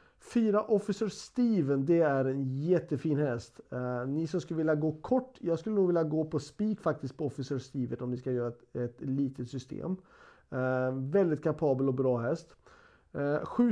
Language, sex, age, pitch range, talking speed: Swedish, male, 40-59, 130-175 Hz, 170 wpm